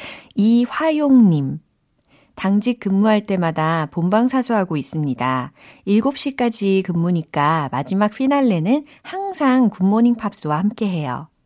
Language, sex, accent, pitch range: Korean, female, native, 160-220 Hz